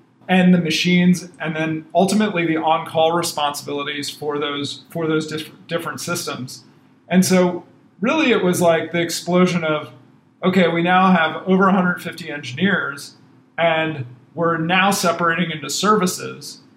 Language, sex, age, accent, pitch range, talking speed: English, male, 40-59, American, 155-175 Hz, 135 wpm